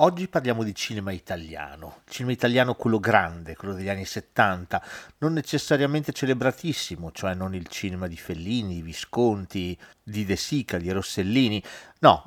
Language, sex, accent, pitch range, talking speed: Italian, male, native, 95-130 Hz, 140 wpm